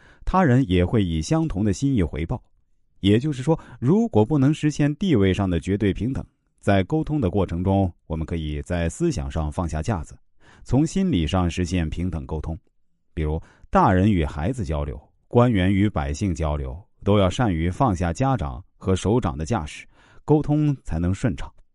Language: Chinese